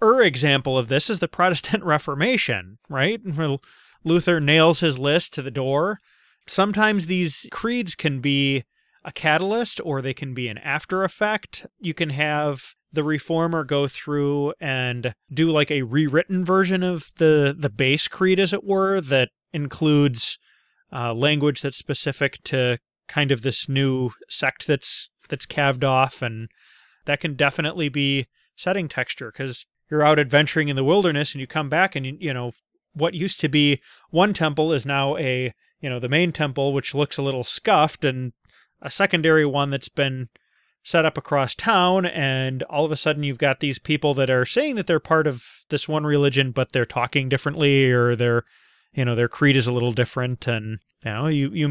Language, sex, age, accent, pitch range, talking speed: English, male, 30-49, American, 135-165 Hz, 180 wpm